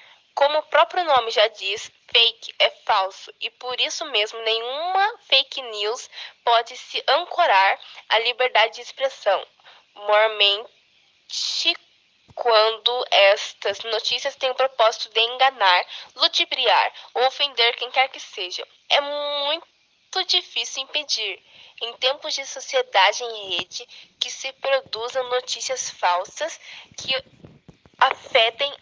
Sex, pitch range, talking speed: female, 225-280 Hz, 115 wpm